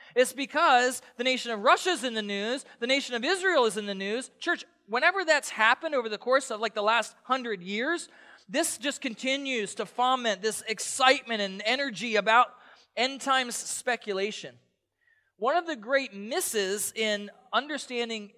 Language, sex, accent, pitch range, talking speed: English, male, American, 210-265 Hz, 165 wpm